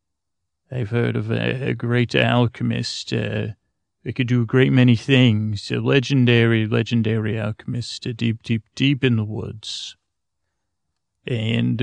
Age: 30-49